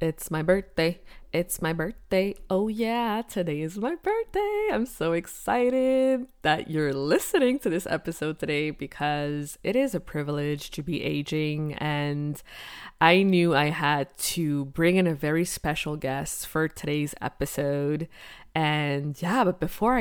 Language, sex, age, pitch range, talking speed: English, female, 20-39, 145-170 Hz, 145 wpm